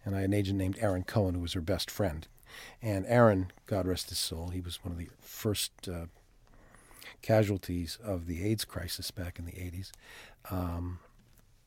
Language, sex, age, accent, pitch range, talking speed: English, male, 40-59, American, 95-130 Hz, 185 wpm